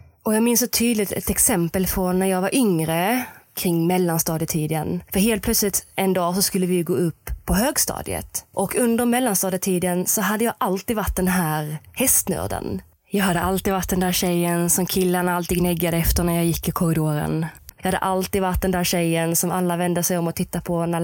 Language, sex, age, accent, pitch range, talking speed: Swedish, female, 20-39, native, 170-200 Hz, 205 wpm